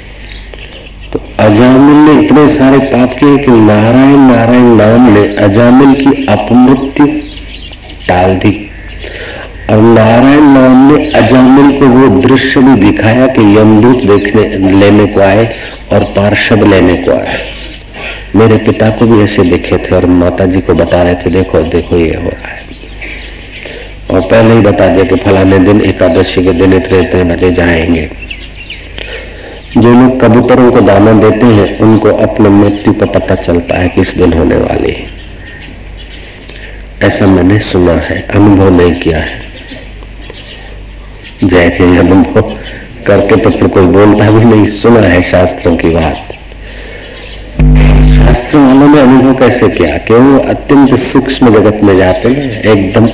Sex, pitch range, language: male, 95-120 Hz, Hindi